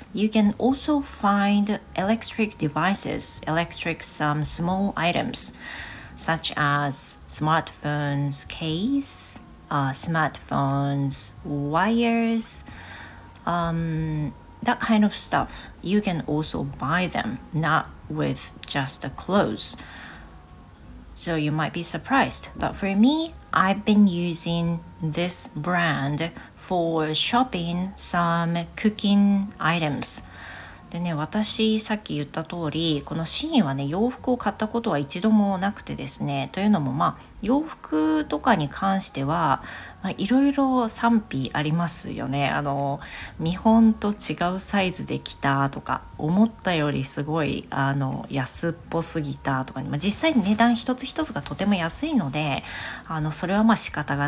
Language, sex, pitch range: Japanese, female, 145-205 Hz